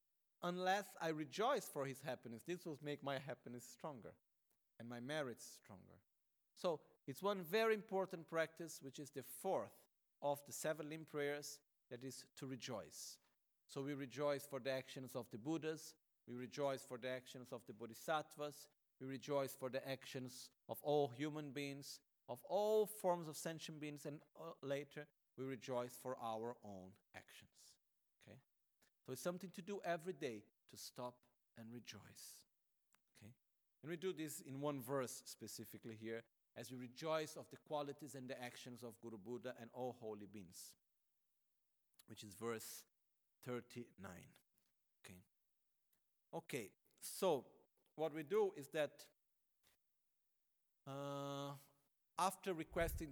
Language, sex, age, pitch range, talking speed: Italian, male, 50-69, 125-155 Hz, 145 wpm